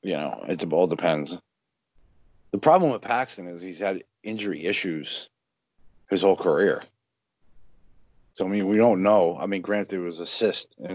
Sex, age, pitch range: male, 40-59, 90-115 Hz